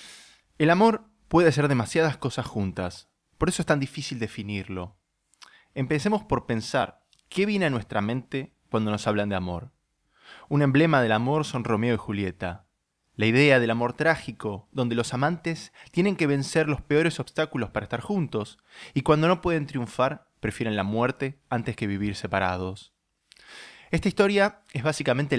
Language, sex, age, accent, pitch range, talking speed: Spanish, male, 20-39, Argentinian, 105-150 Hz, 160 wpm